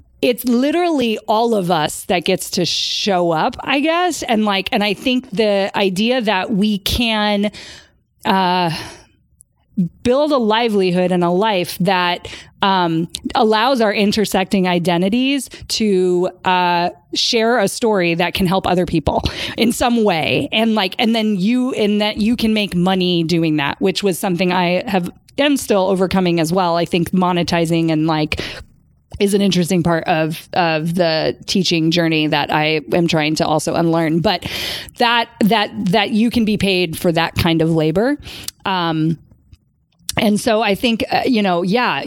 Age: 30-49